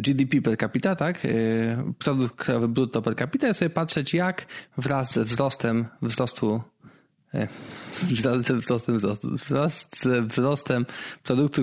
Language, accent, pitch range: Polish, native, 125-175 Hz